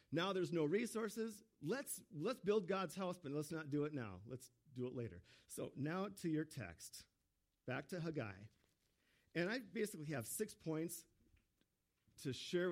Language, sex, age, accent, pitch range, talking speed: English, male, 50-69, American, 125-180 Hz, 165 wpm